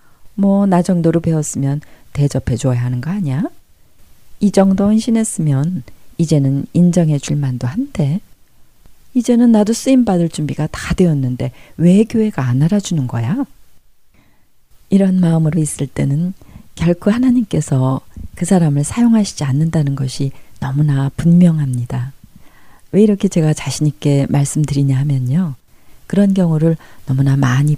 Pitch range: 135-180 Hz